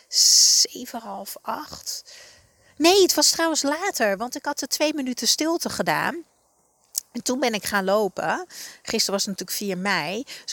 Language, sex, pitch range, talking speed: Dutch, female, 190-275 Hz, 160 wpm